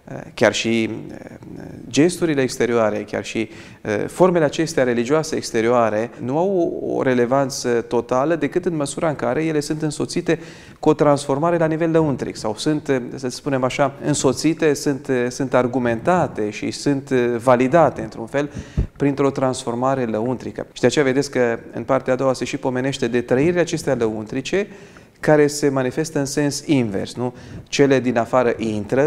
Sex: male